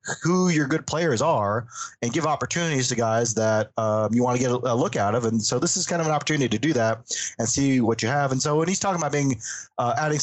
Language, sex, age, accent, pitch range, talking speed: English, male, 30-49, American, 115-145 Hz, 265 wpm